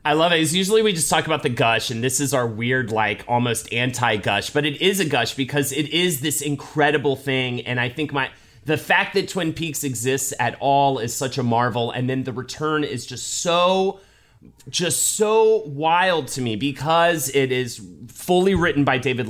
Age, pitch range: 30-49, 125-180 Hz